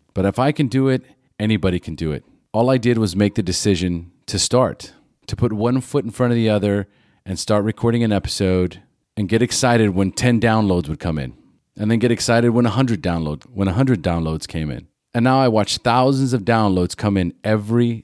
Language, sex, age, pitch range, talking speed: English, male, 30-49, 100-120 Hz, 205 wpm